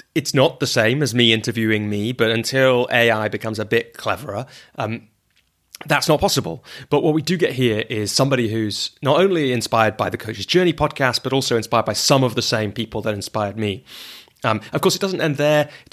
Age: 30-49